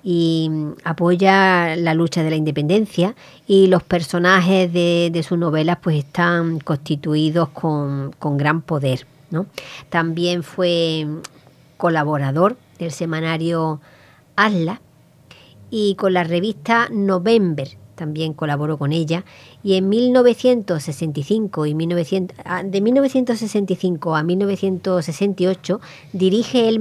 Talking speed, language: 95 wpm, Spanish